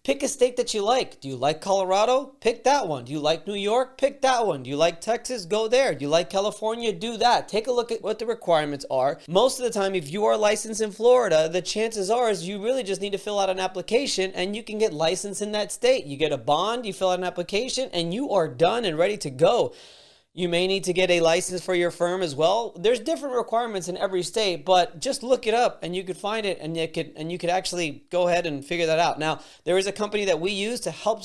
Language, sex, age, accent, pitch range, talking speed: English, male, 30-49, American, 160-205 Hz, 270 wpm